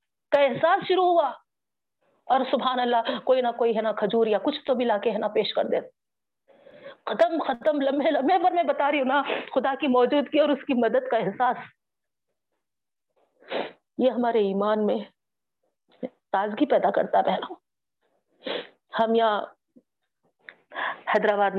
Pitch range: 205-280 Hz